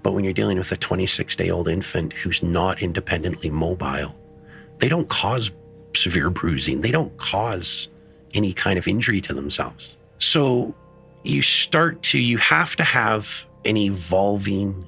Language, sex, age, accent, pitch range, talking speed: English, male, 40-59, American, 90-110 Hz, 145 wpm